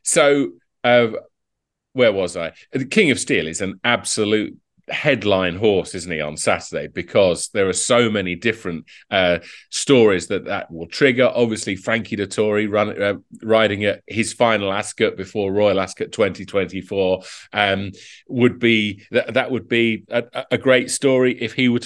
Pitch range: 100-125 Hz